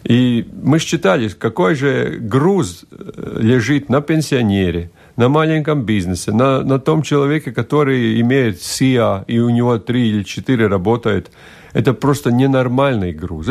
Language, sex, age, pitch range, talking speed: Russian, male, 50-69, 110-140 Hz, 135 wpm